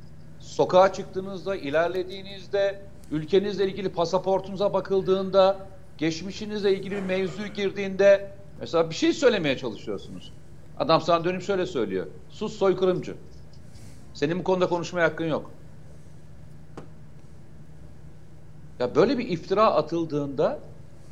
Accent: native